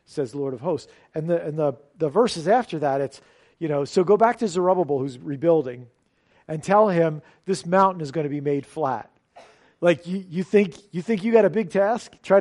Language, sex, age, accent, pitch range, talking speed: English, male, 40-59, American, 145-185 Hz, 220 wpm